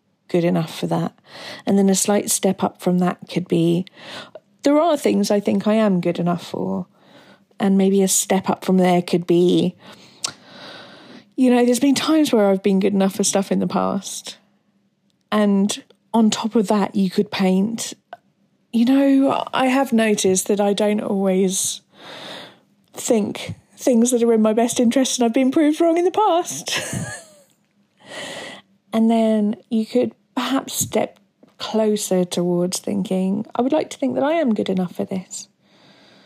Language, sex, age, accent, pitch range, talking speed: English, female, 40-59, British, 190-240 Hz, 170 wpm